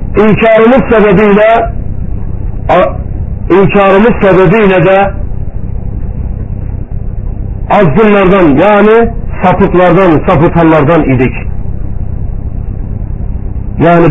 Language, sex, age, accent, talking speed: Turkish, male, 50-69, native, 45 wpm